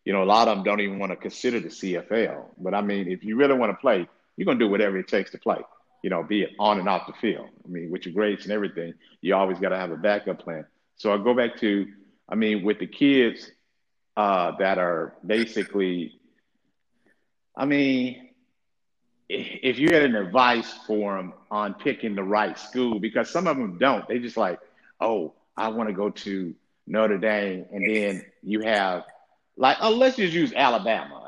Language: English